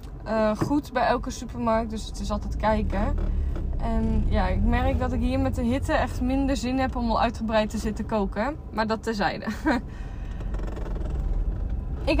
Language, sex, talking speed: Dutch, female, 165 wpm